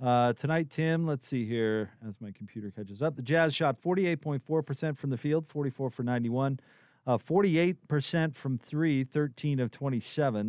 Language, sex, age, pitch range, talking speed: English, male, 40-59, 120-150 Hz, 160 wpm